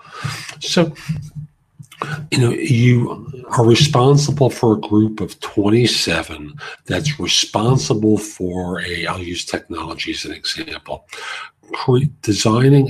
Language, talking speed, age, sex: English, 100 wpm, 50-69, male